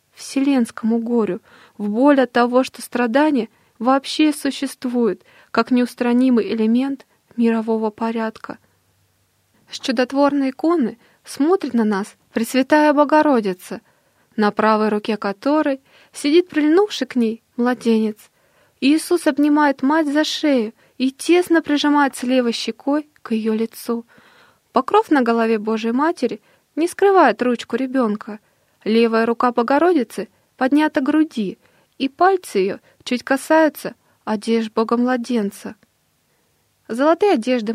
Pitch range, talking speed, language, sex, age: 220-290 Hz, 110 wpm, Russian, female, 20-39